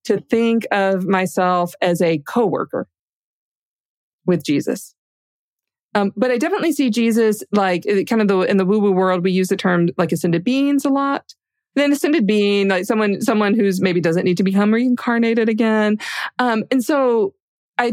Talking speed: 170 wpm